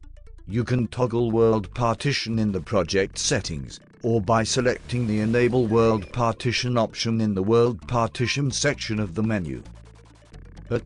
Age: 50-69